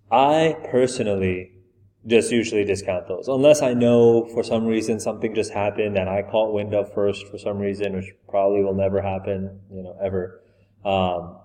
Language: English